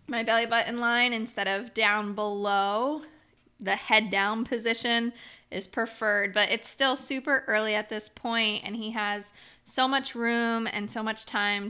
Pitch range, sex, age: 215-250 Hz, female, 20-39